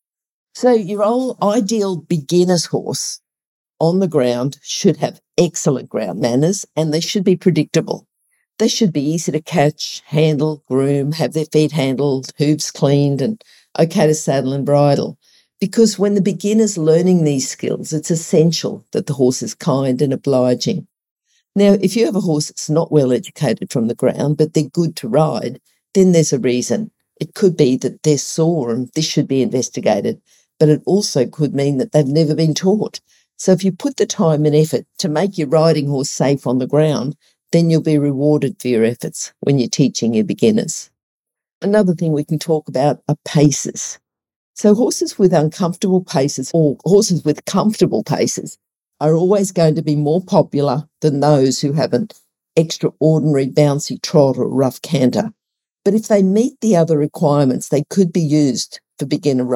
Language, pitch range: English, 145-190 Hz